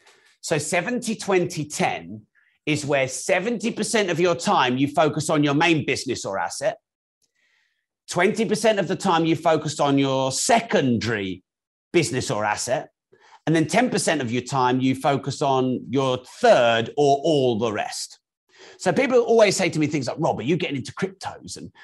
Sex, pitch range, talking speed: male, 135-200 Hz, 160 wpm